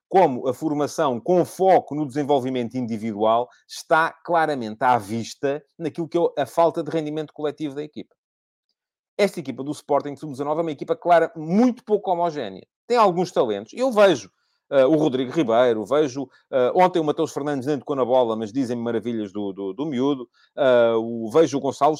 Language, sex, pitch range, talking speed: Portuguese, male, 125-165 Hz, 180 wpm